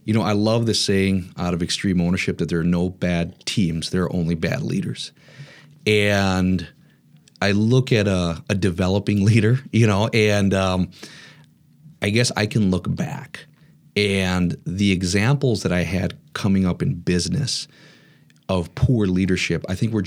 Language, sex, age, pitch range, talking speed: English, male, 40-59, 90-110 Hz, 165 wpm